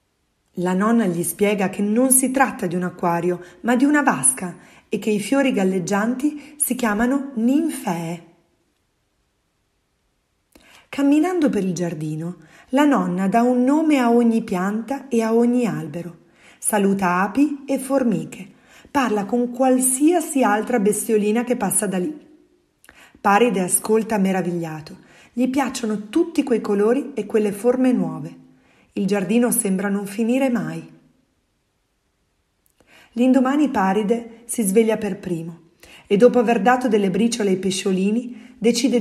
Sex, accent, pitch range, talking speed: female, native, 180-255 Hz, 130 wpm